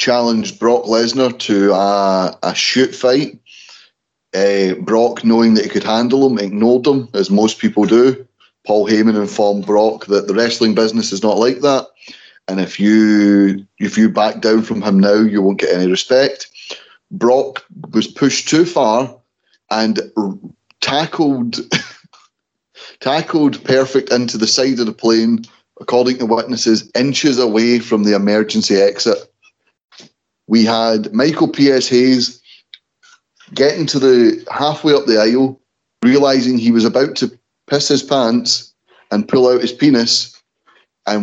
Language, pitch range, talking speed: English, 110-130 Hz, 145 wpm